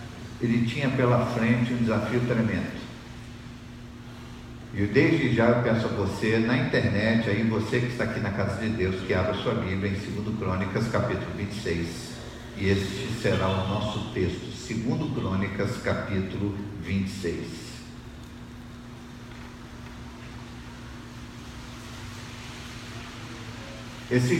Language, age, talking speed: Portuguese, 50-69, 110 wpm